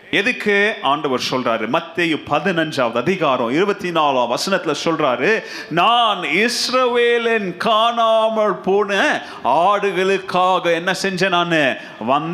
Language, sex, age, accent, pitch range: Tamil, male, 30-49, native, 175-235 Hz